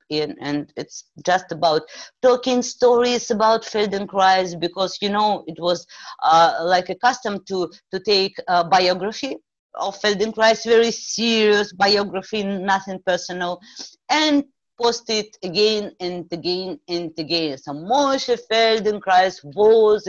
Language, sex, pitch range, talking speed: German, female, 170-210 Hz, 120 wpm